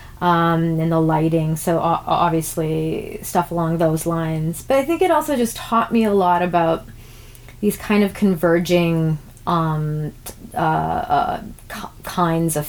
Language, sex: English, female